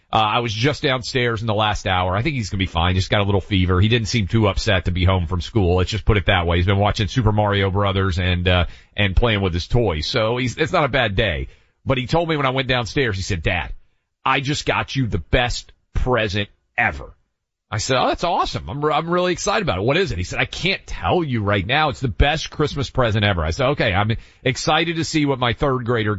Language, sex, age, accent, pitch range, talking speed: English, male, 40-59, American, 95-140 Hz, 265 wpm